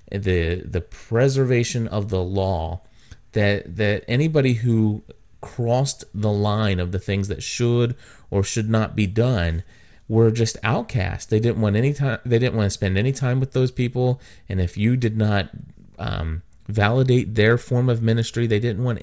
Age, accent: 30-49, American